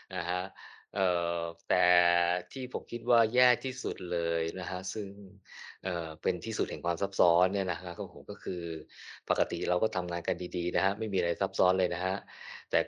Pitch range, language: 95-125 Hz, Thai